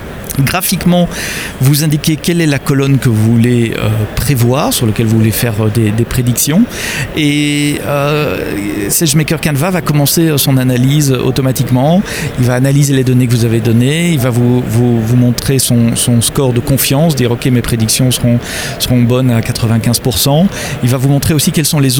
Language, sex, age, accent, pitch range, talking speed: French, male, 40-59, French, 115-145 Hz, 185 wpm